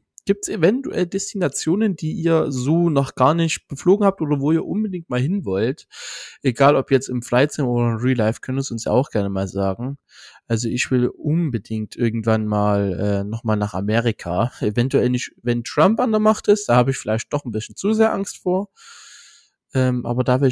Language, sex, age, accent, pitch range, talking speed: German, male, 20-39, German, 115-140 Hz, 210 wpm